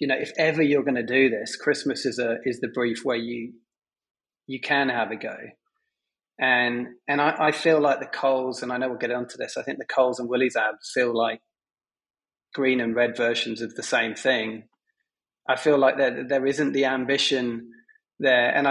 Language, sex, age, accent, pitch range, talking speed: English, male, 30-49, British, 125-145 Hz, 205 wpm